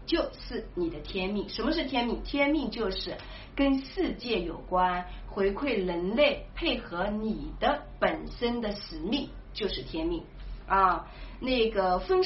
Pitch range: 190-280 Hz